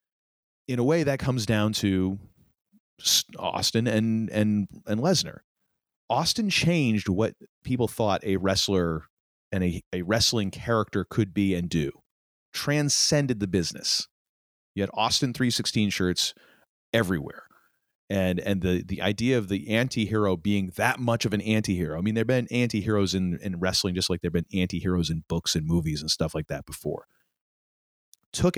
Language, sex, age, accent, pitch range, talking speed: English, male, 30-49, American, 95-125 Hz, 160 wpm